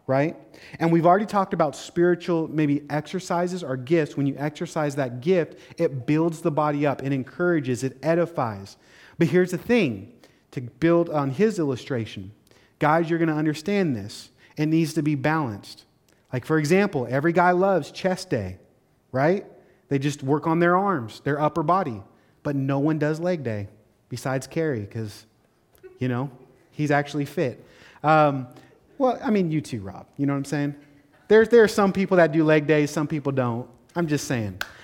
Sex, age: male, 30-49